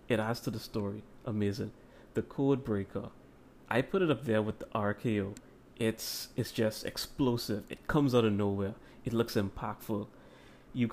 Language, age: English, 30-49